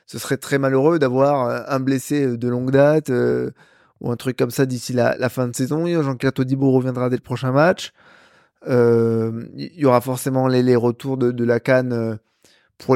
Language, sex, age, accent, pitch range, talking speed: French, male, 20-39, French, 125-145 Hz, 195 wpm